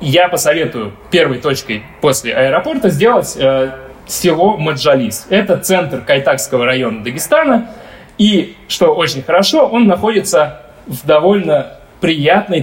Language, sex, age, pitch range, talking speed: Russian, male, 20-39, 130-190 Hz, 115 wpm